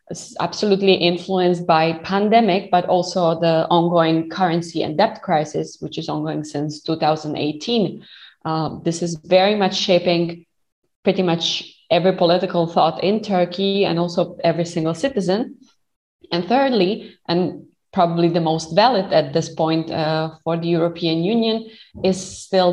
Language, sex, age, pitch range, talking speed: Slovak, female, 20-39, 160-190 Hz, 135 wpm